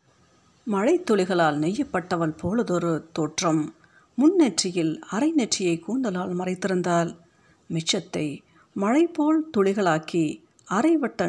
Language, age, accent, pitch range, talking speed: Tamil, 50-69, native, 165-230 Hz, 70 wpm